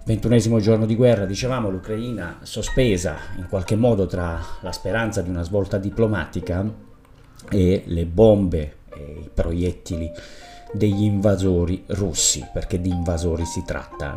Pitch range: 90-110 Hz